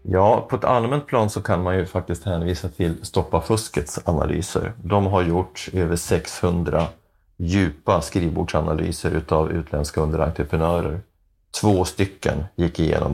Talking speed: 130 wpm